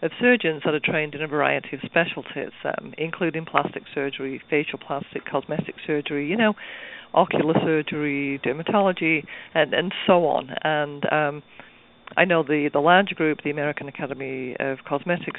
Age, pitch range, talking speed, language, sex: 50-69, 145-175 Hz, 155 wpm, English, female